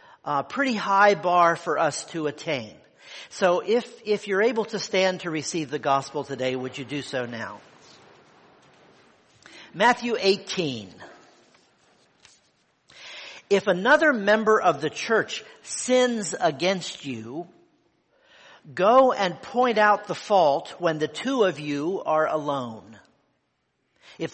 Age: 50-69